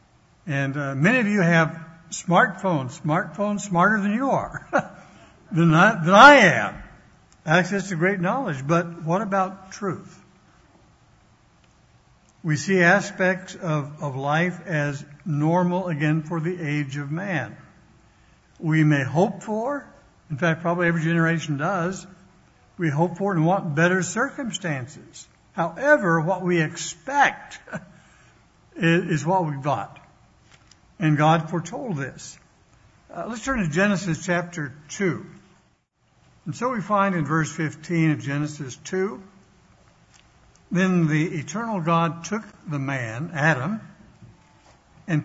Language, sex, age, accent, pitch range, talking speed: English, male, 60-79, American, 155-190 Hz, 125 wpm